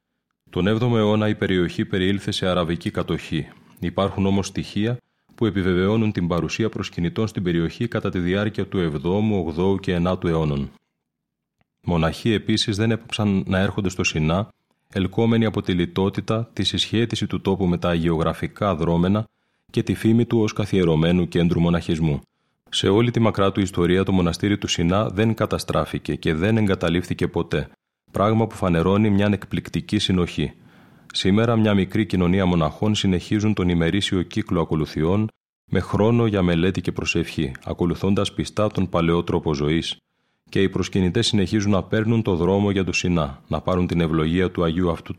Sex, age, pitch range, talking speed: male, 30-49, 85-105 Hz, 155 wpm